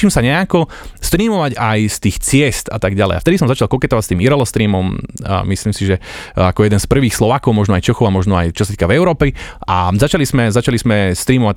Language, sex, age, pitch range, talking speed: Slovak, male, 30-49, 105-145 Hz, 225 wpm